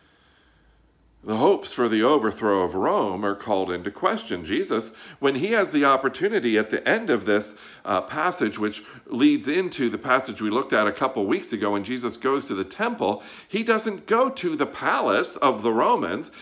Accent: American